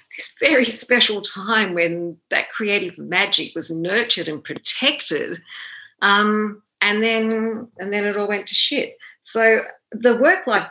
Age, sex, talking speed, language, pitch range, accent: 40-59, female, 140 wpm, English, 160-235 Hz, Australian